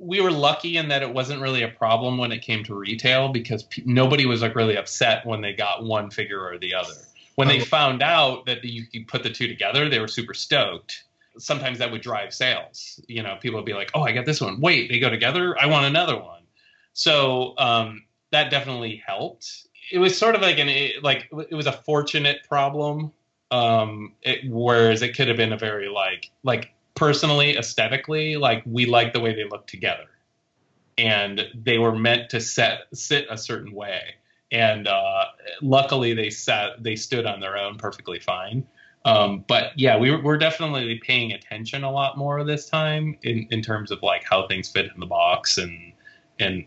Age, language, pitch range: 30-49, English, 110-145 Hz